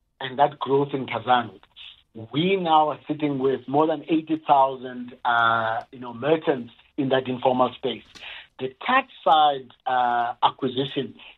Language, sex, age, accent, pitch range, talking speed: English, male, 50-69, South African, 125-165 Hz, 135 wpm